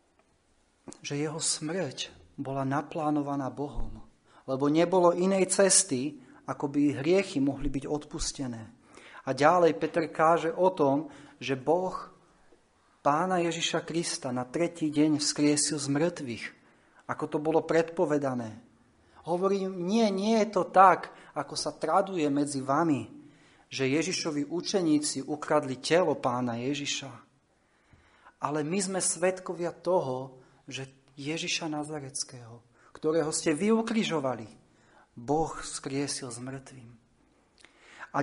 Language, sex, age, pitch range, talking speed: Slovak, male, 30-49, 140-180 Hz, 115 wpm